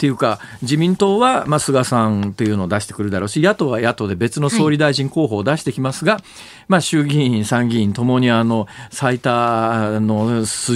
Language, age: Japanese, 40-59